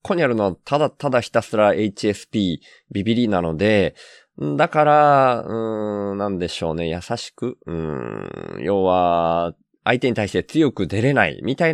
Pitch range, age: 85-120 Hz, 20-39